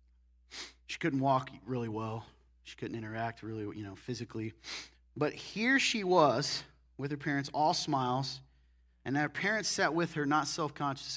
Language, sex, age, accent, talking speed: English, male, 30-49, American, 155 wpm